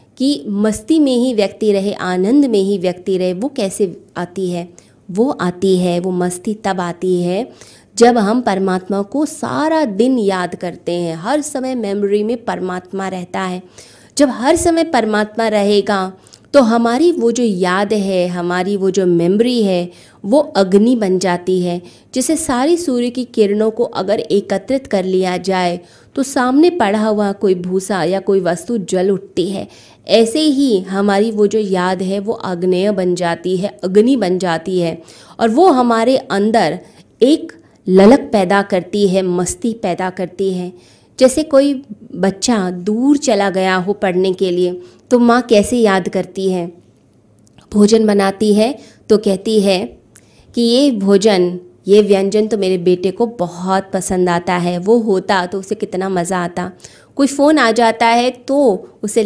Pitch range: 185-230 Hz